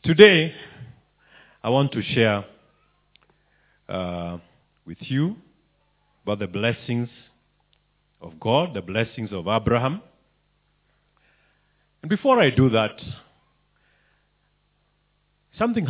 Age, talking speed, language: 50-69, 85 wpm, English